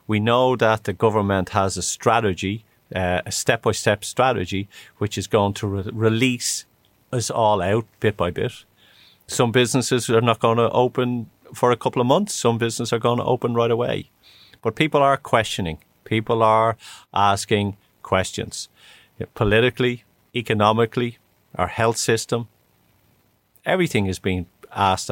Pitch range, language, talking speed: 100-125 Hz, English, 145 wpm